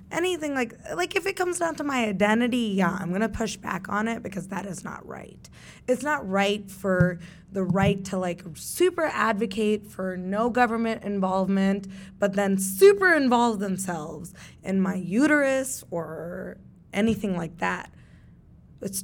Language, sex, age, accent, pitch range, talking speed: English, female, 20-39, American, 180-220 Hz, 155 wpm